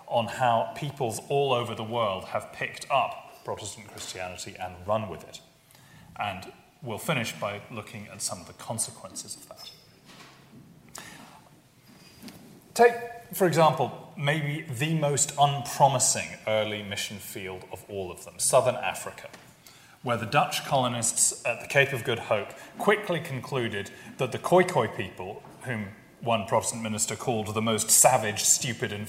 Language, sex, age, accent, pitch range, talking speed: English, male, 30-49, British, 105-145 Hz, 145 wpm